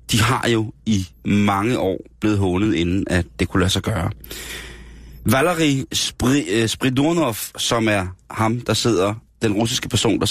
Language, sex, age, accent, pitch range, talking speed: Danish, male, 30-49, native, 90-115 Hz, 155 wpm